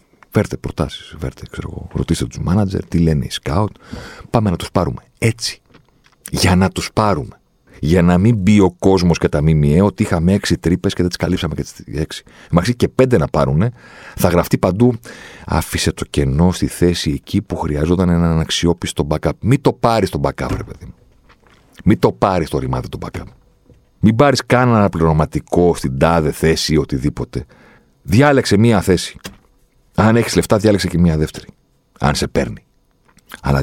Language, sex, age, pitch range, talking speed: Greek, male, 40-59, 75-95 Hz, 170 wpm